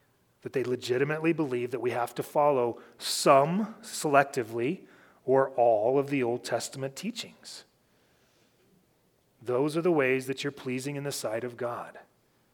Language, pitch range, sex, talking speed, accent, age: English, 135-170 Hz, male, 145 wpm, Canadian, 30-49